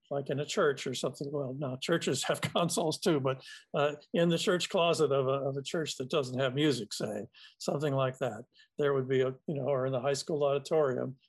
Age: 50-69